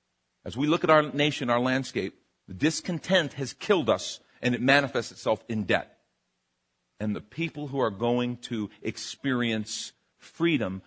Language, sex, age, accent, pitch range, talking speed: English, male, 40-59, American, 105-155 Hz, 155 wpm